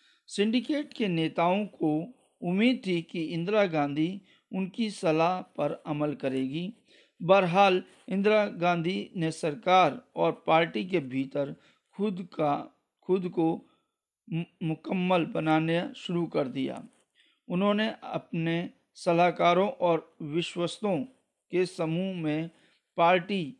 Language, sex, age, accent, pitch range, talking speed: Hindi, male, 50-69, native, 160-195 Hz, 105 wpm